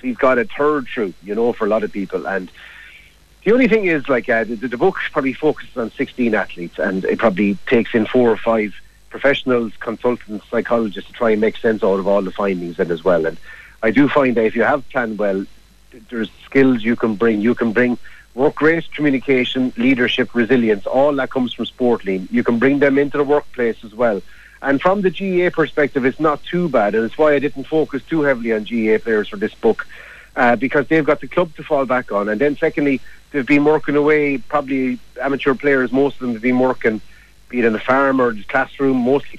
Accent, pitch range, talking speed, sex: Irish, 115-145 Hz, 225 wpm, male